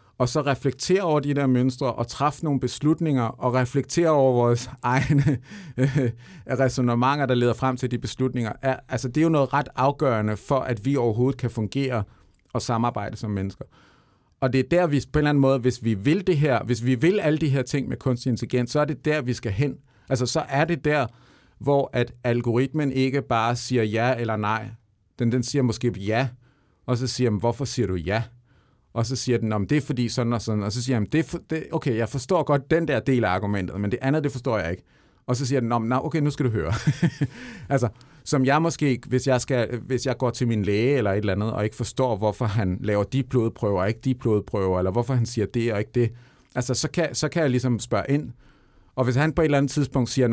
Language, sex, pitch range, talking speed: Danish, male, 115-140 Hz, 230 wpm